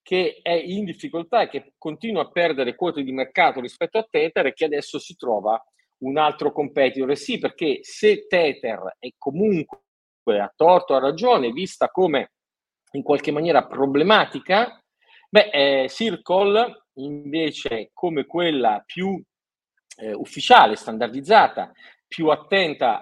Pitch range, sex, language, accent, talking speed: 135-190 Hz, male, Italian, native, 135 wpm